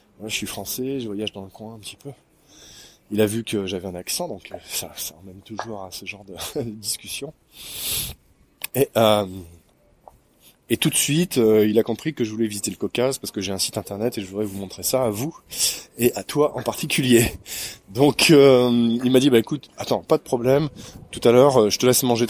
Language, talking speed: French, 215 wpm